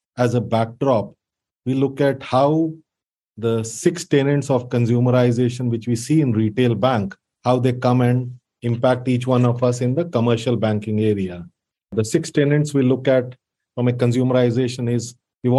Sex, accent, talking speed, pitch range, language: male, Indian, 165 wpm, 120-135 Hz, English